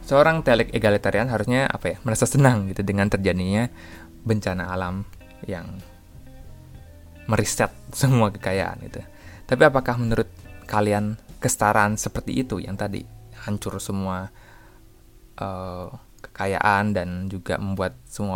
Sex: male